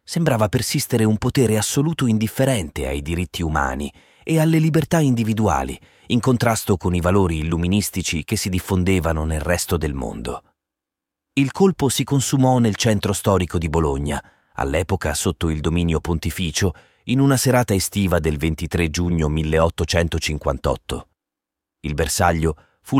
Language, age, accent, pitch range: Italian, 30-49, native, 80-105 Hz